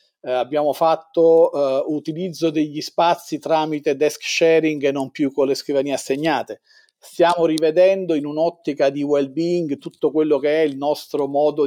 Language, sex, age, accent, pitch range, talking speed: Italian, male, 40-59, native, 135-165 Hz, 155 wpm